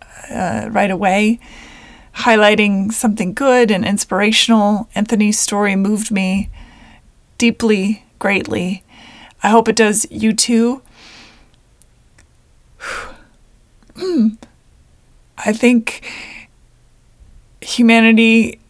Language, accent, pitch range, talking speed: English, American, 205-230 Hz, 75 wpm